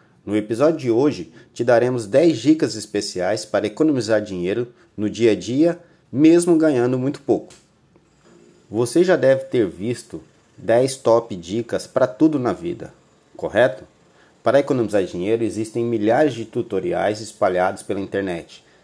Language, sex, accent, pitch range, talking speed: Portuguese, male, Brazilian, 115-150 Hz, 135 wpm